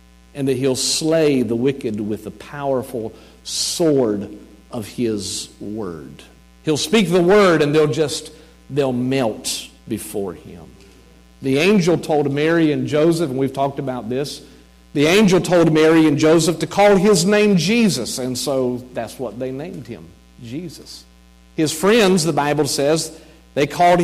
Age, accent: 50-69, American